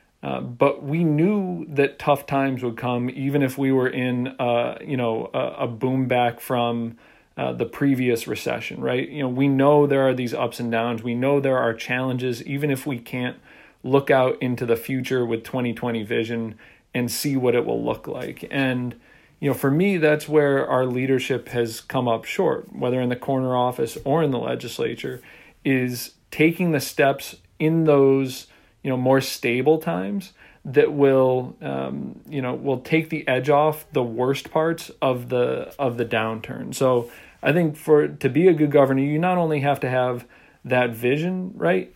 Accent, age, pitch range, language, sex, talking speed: American, 40-59, 125-145 Hz, English, male, 185 wpm